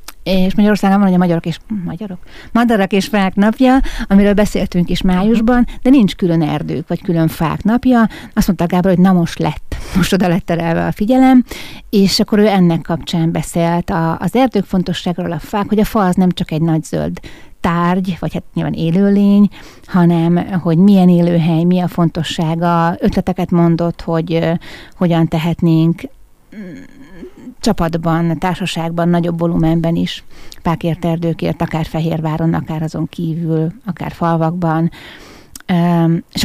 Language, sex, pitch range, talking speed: Hungarian, female, 165-195 Hz, 150 wpm